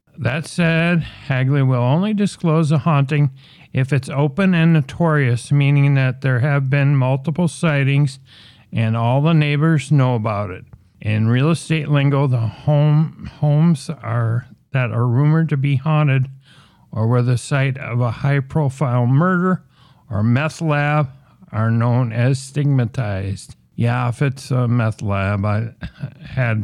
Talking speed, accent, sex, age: 145 wpm, American, male, 50-69